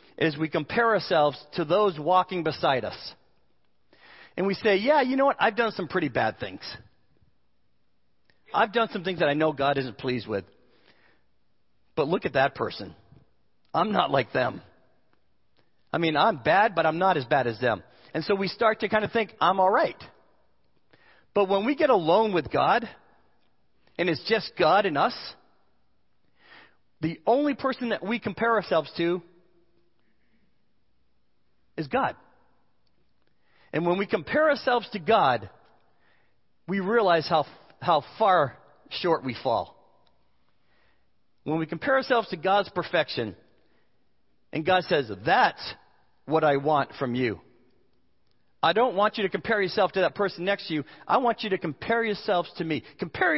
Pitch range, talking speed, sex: 130-210 Hz, 155 wpm, male